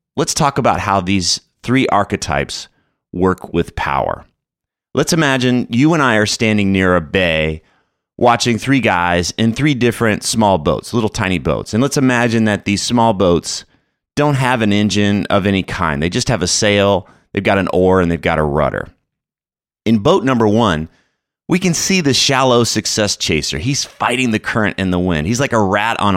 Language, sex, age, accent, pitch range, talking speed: English, male, 30-49, American, 90-120 Hz, 190 wpm